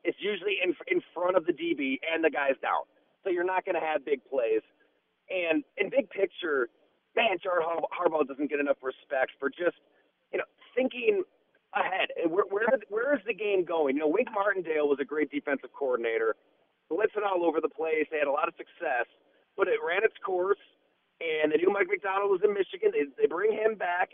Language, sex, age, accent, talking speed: English, male, 30-49, American, 205 wpm